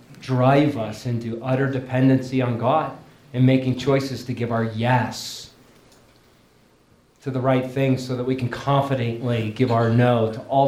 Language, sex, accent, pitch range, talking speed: English, male, American, 125-145 Hz, 155 wpm